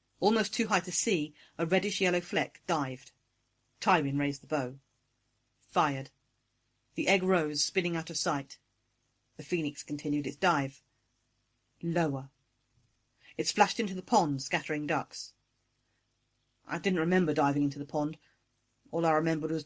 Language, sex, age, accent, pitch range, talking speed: English, female, 40-59, British, 120-180 Hz, 135 wpm